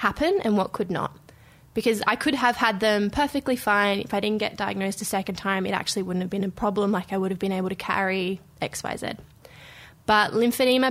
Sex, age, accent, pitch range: female, 20-39, Australian, 190-210 Hz